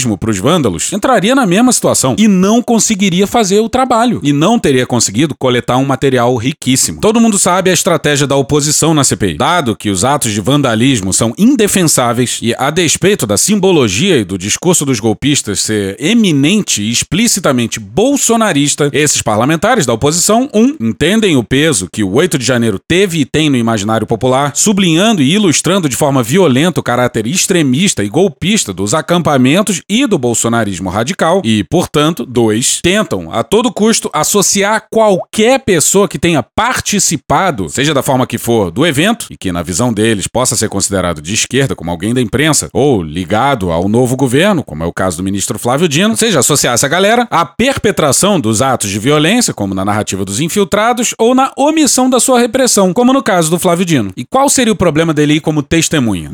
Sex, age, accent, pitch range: male, 30-49, Brazilian, 120-200 Hz